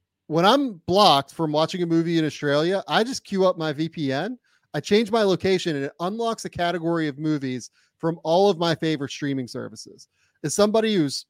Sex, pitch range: male, 150-195 Hz